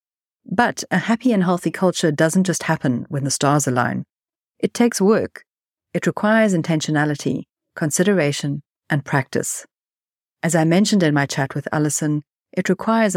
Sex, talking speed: female, 145 wpm